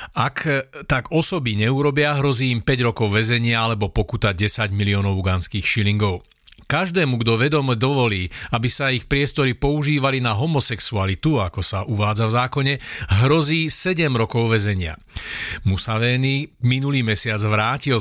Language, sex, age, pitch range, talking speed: Slovak, male, 40-59, 110-140 Hz, 130 wpm